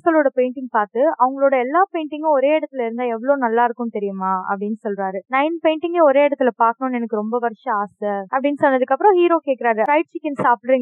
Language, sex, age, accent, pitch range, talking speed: Tamil, female, 20-39, native, 235-325 Hz, 130 wpm